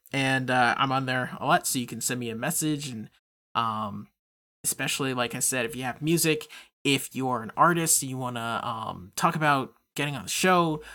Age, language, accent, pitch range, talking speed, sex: 20-39, English, American, 130-170 Hz, 215 wpm, male